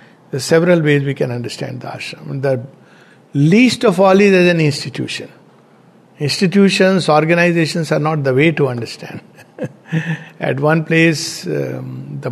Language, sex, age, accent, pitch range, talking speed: English, male, 60-79, Indian, 150-190 Hz, 135 wpm